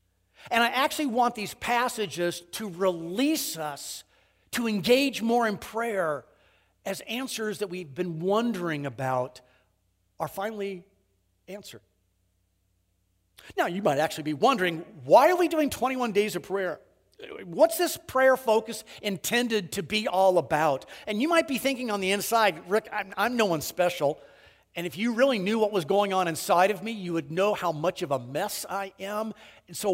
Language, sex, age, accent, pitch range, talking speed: English, male, 50-69, American, 150-230 Hz, 170 wpm